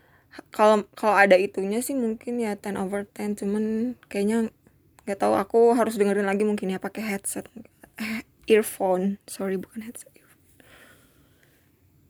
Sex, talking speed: female, 140 wpm